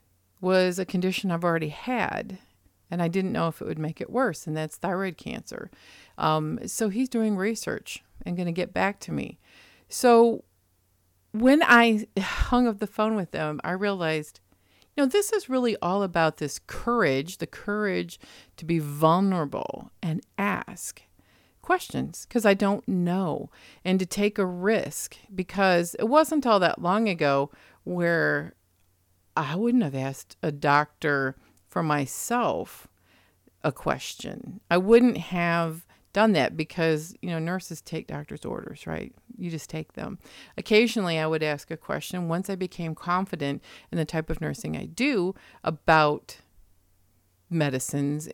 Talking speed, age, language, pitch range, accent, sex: 155 wpm, 50-69, English, 150-210 Hz, American, female